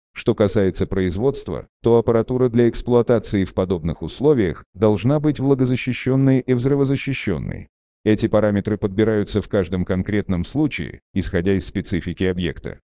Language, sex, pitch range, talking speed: Russian, male, 95-125 Hz, 120 wpm